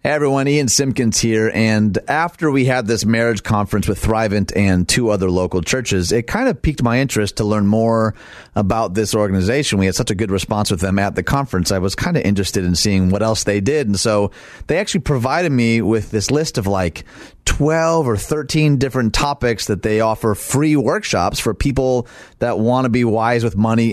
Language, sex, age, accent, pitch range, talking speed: English, male, 30-49, American, 100-130 Hz, 210 wpm